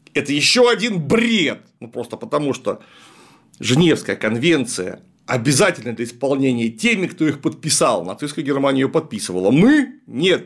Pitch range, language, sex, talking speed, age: 145-215 Hz, Russian, male, 130 wpm, 40-59